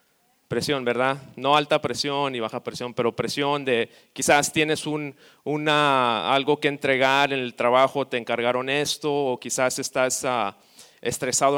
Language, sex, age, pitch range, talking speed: Spanish, male, 30-49, 120-145 Hz, 150 wpm